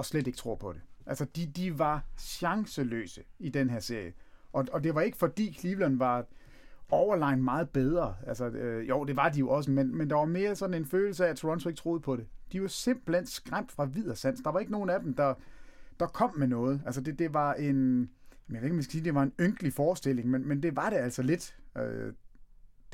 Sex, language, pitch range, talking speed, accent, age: male, English, 130-170 Hz, 215 wpm, Danish, 30-49